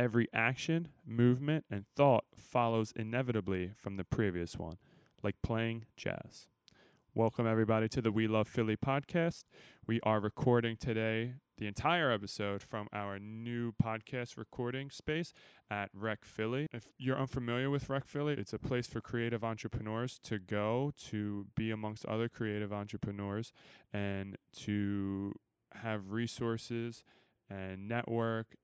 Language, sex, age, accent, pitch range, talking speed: English, male, 20-39, American, 100-120 Hz, 135 wpm